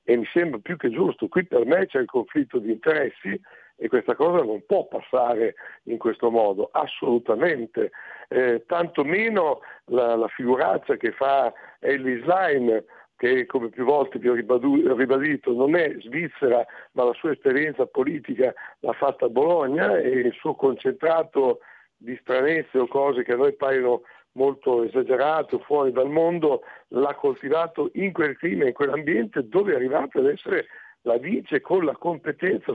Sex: male